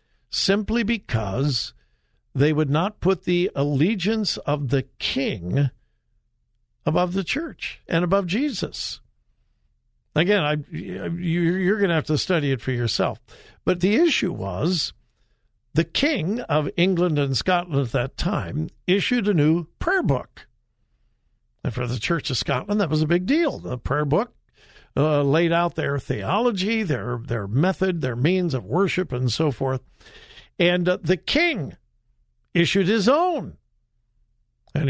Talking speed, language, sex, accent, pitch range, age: 140 wpm, English, male, American, 140-195 Hz, 60-79